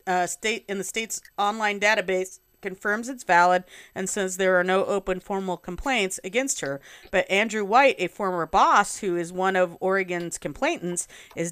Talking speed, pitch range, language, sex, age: 170 wpm, 175-210 Hz, English, female, 40-59